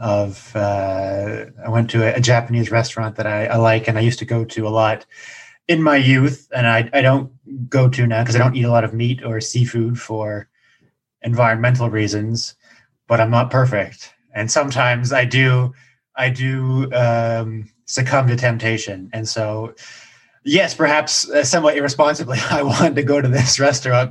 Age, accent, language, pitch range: 20-39, American, English, 110-130 Hz